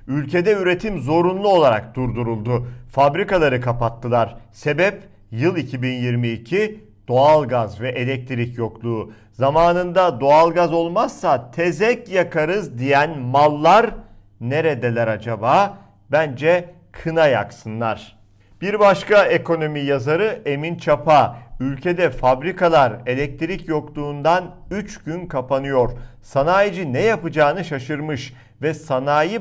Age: 50-69